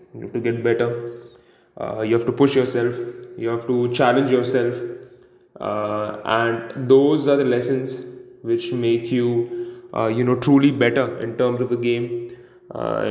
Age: 20-39